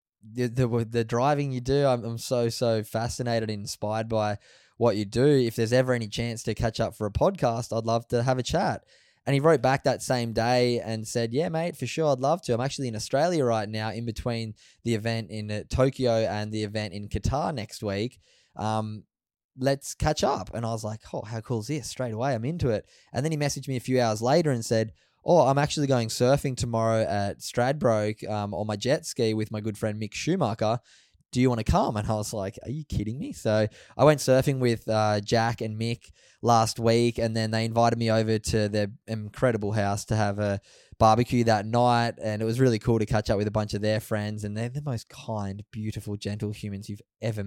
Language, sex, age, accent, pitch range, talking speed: English, male, 20-39, Australian, 105-125 Hz, 230 wpm